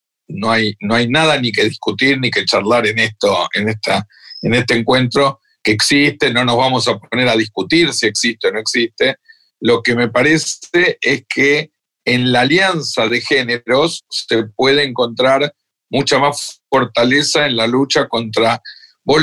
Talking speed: 170 wpm